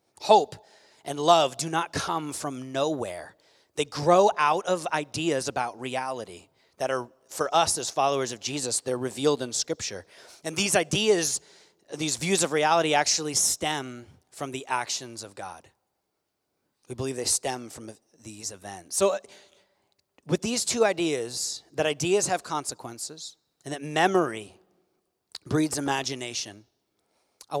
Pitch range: 120-175 Hz